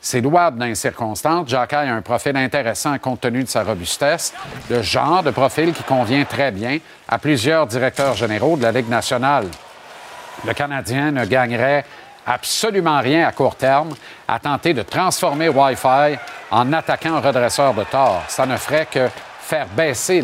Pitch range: 125-165 Hz